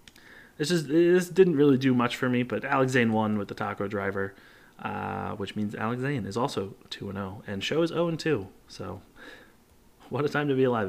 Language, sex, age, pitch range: English, male, 20-39, 105-135 Hz